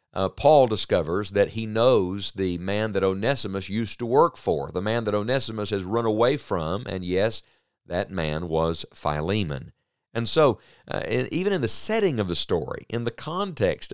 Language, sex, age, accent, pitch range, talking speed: English, male, 50-69, American, 95-120 Hz, 175 wpm